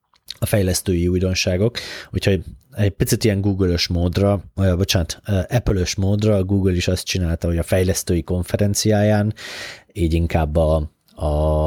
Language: Hungarian